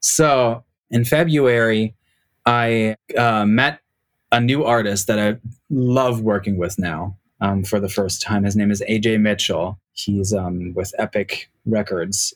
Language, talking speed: English, 145 wpm